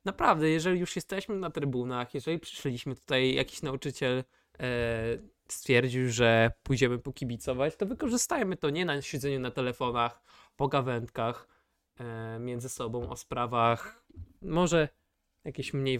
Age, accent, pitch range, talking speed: 20-39, native, 115-160 Hz, 130 wpm